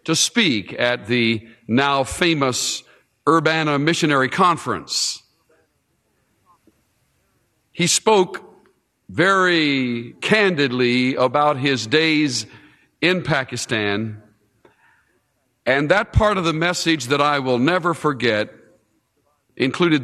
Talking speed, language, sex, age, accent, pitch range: 85 wpm, English, male, 50-69, American, 120-165 Hz